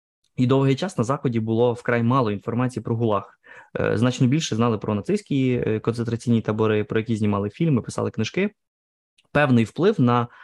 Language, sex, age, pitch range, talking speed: Ukrainian, male, 20-39, 110-135 Hz, 155 wpm